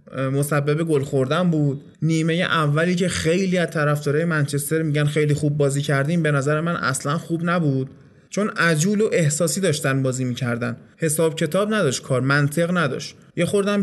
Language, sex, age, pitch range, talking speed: Persian, male, 20-39, 145-185 Hz, 165 wpm